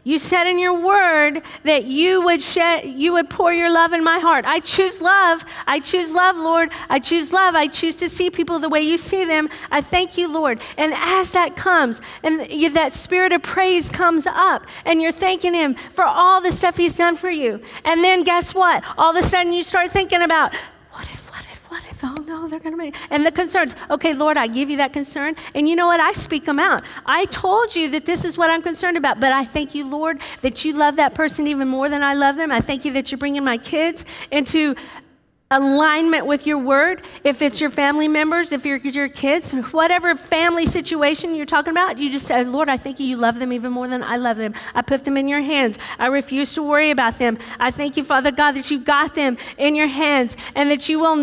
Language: English